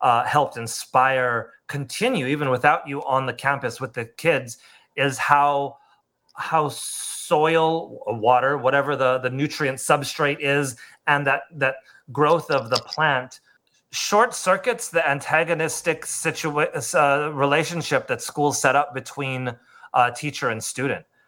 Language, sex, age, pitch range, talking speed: English, male, 30-49, 130-150 Hz, 135 wpm